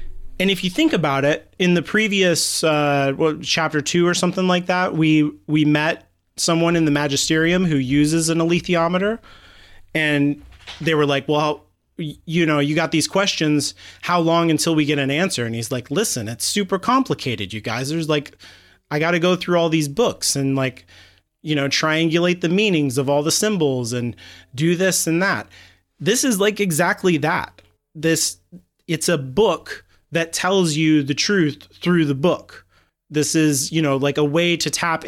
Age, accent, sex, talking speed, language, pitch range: 30-49, American, male, 180 wpm, English, 135-170 Hz